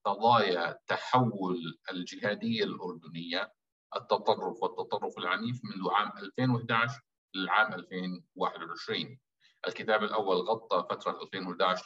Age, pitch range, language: 50-69, 110-160 Hz, Arabic